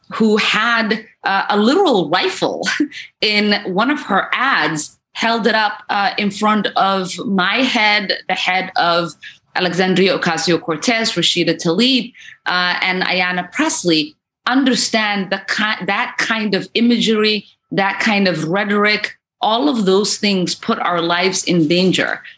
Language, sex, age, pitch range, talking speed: English, female, 30-49, 180-220 Hz, 130 wpm